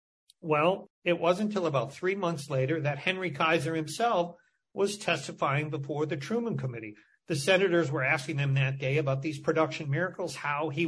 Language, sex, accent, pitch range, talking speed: English, male, American, 145-185 Hz, 170 wpm